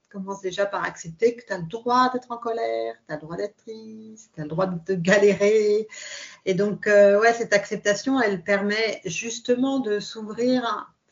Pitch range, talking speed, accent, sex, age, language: 180-220 Hz, 200 wpm, French, female, 40-59, French